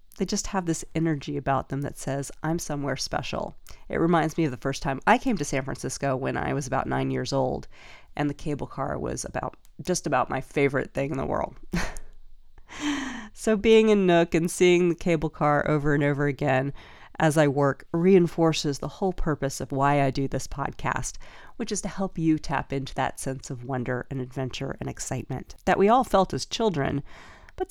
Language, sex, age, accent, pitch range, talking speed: English, female, 40-59, American, 140-180 Hz, 200 wpm